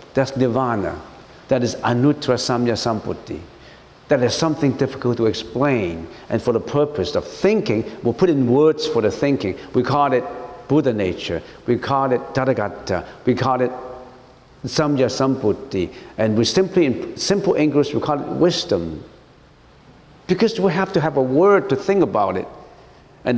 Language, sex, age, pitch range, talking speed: English, male, 60-79, 120-165 Hz, 160 wpm